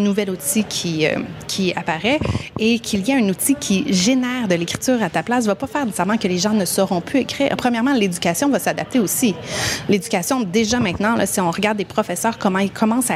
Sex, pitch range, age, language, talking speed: female, 185-240 Hz, 30-49, French, 220 wpm